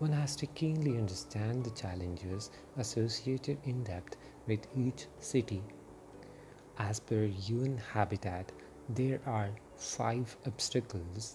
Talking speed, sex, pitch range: 110 wpm, male, 105-135 Hz